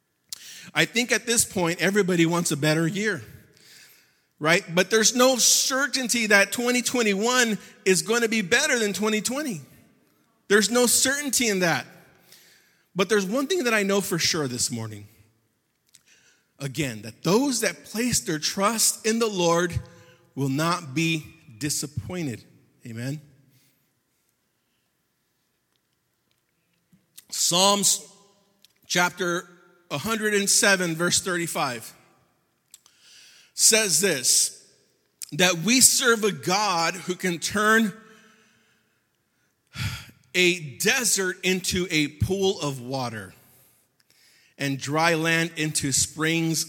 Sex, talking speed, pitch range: male, 105 wpm, 140-210 Hz